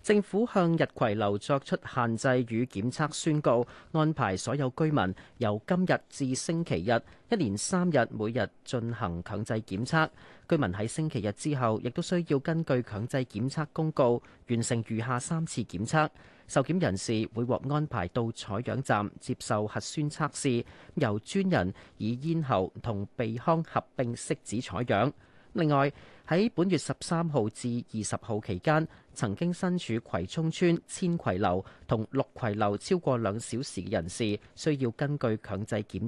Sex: male